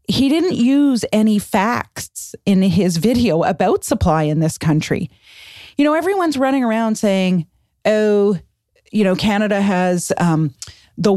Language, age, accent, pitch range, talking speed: English, 40-59, American, 165-215 Hz, 140 wpm